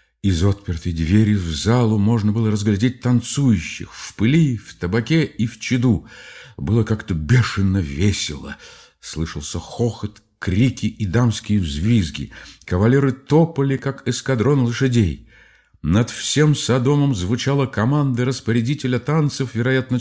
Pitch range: 95-125 Hz